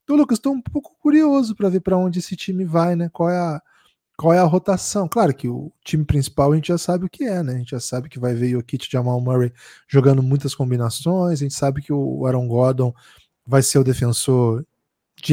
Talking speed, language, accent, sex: 240 wpm, Portuguese, Brazilian, male